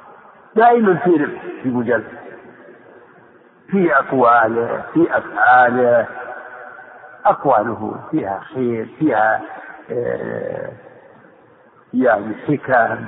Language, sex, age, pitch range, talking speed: Arabic, male, 50-69, 130-200 Hz, 75 wpm